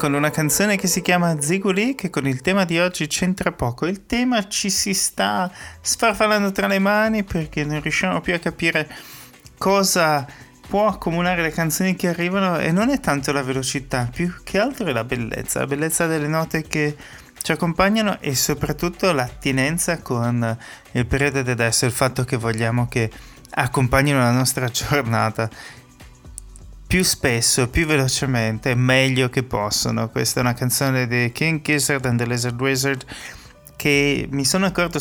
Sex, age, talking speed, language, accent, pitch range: male, 30-49, 165 wpm, Italian, native, 125-165 Hz